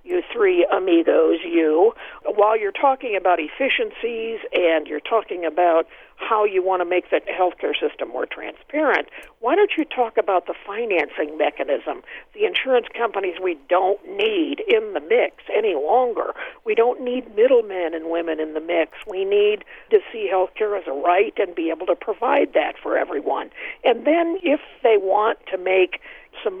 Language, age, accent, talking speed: English, 50-69, American, 170 wpm